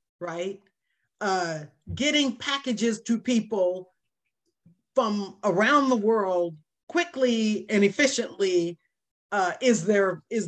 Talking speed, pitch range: 95 wpm, 175-250 Hz